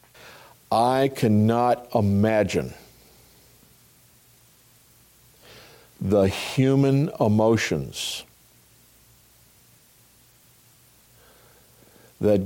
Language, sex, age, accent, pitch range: English, male, 50-69, American, 105-125 Hz